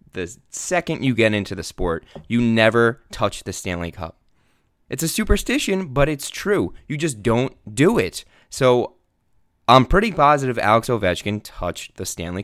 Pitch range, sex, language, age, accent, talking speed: 90-115 Hz, male, English, 20-39, American, 160 wpm